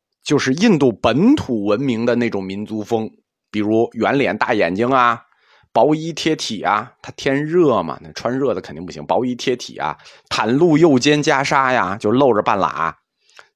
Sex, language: male, Chinese